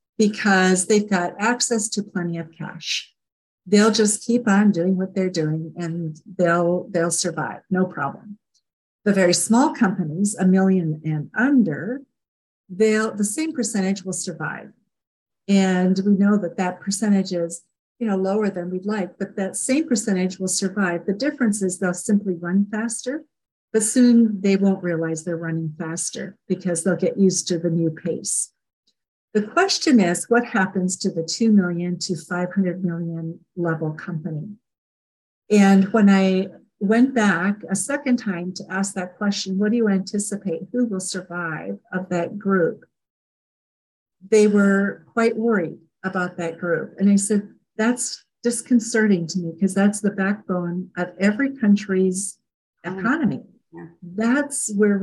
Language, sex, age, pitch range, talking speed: English, female, 50-69, 180-210 Hz, 150 wpm